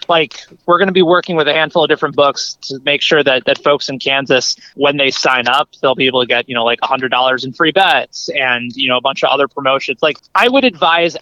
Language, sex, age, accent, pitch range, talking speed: English, male, 20-39, American, 140-200 Hz, 255 wpm